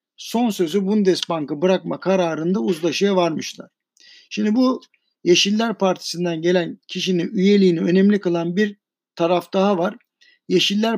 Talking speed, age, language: 115 wpm, 60-79, Turkish